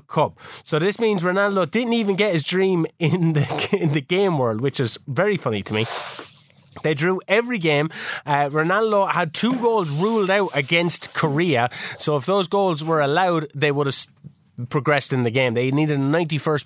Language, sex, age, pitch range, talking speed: English, male, 20-39, 145-190 Hz, 185 wpm